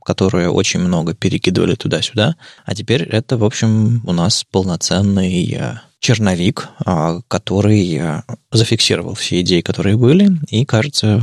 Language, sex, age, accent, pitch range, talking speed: Russian, male, 20-39, native, 95-120 Hz, 120 wpm